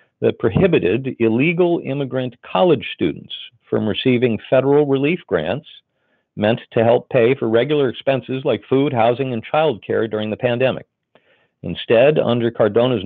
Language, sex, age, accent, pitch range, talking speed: English, male, 50-69, American, 110-140 Hz, 135 wpm